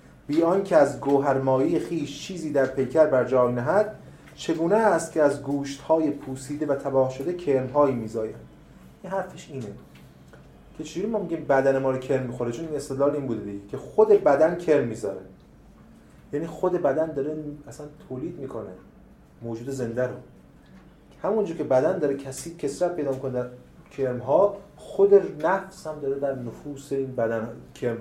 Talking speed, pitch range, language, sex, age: 165 wpm, 130-170 Hz, Persian, male, 30-49